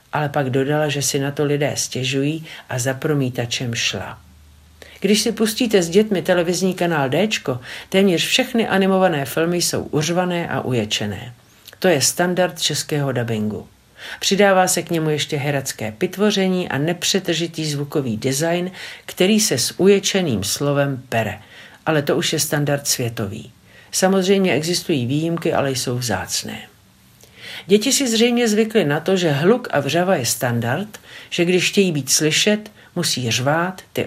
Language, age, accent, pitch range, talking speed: Czech, 50-69, native, 130-185 Hz, 145 wpm